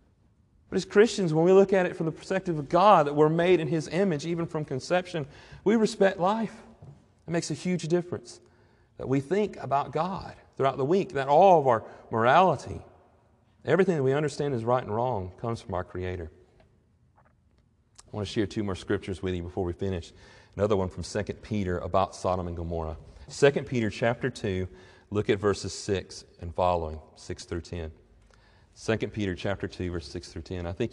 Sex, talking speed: male, 190 wpm